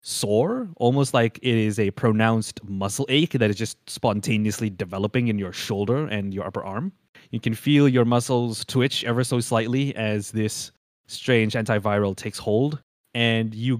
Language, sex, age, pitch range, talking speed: English, male, 20-39, 105-130 Hz, 165 wpm